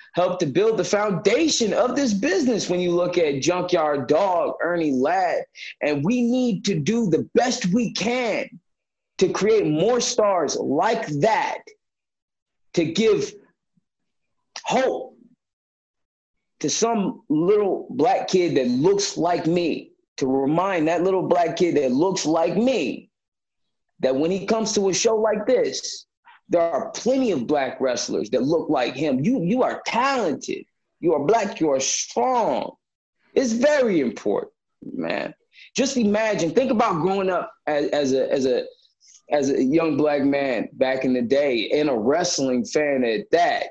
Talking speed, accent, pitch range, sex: 155 wpm, American, 165-260 Hz, male